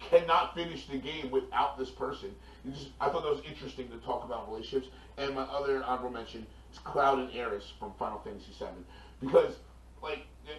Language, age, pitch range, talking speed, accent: English, 30-49, 110-155 Hz, 180 wpm, American